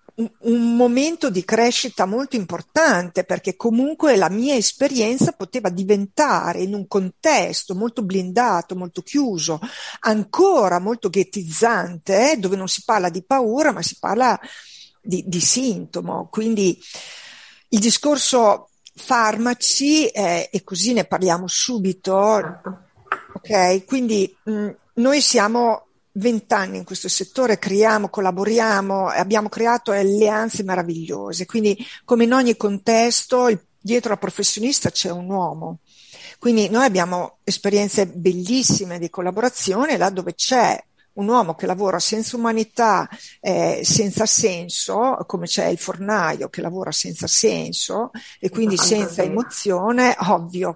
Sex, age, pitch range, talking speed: female, 50-69, 185-235 Hz, 125 wpm